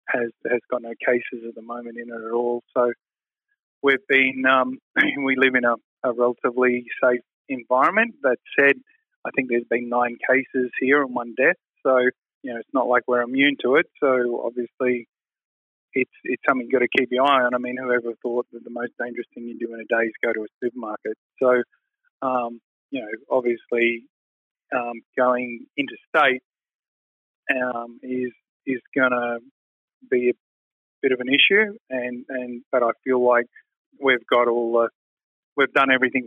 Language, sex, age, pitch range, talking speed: English, male, 20-39, 120-130 Hz, 180 wpm